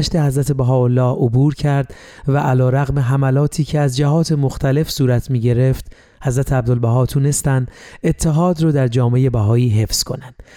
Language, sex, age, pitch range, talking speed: Persian, male, 30-49, 130-145 Hz, 135 wpm